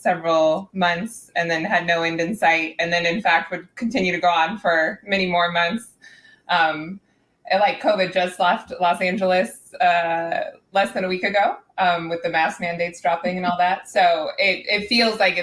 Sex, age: female, 20-39